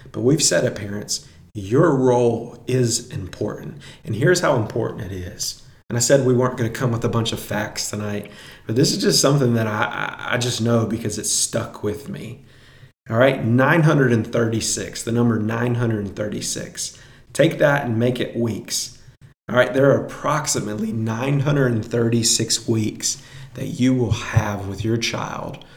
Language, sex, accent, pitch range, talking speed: English, male, American, 115-135 Hz, 165 wpm